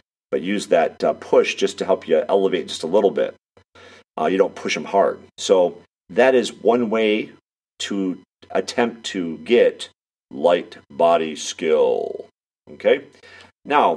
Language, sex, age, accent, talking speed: English, male, 50-69, American, 140 wpm